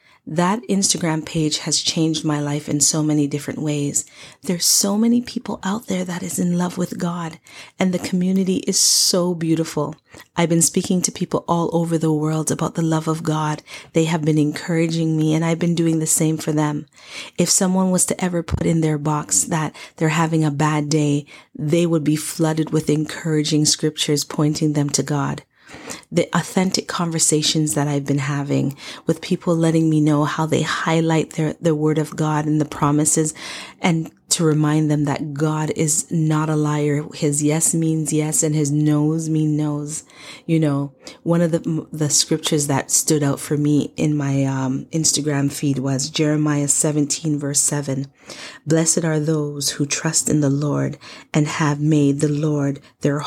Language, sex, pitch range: English, female, 150-165 Hz